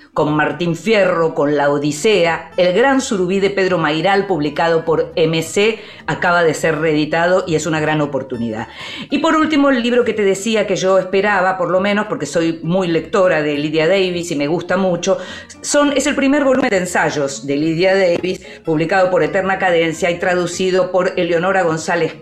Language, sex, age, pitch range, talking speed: Spanish, female, 40-59, 150-195 Hz, 180 wpm